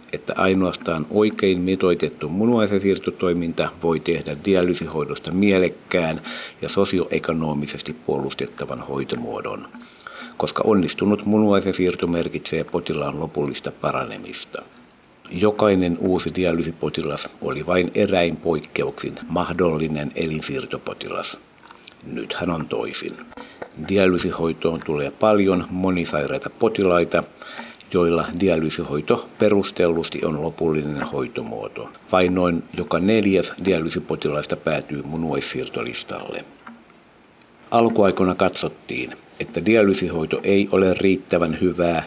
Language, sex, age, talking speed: Finnish, male, 60-79, 85 wpm